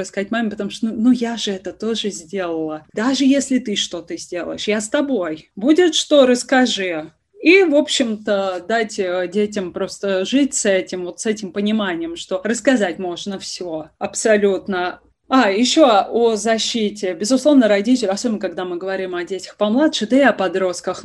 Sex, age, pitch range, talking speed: female, 20-39, 185-230 Hz, 165 wpm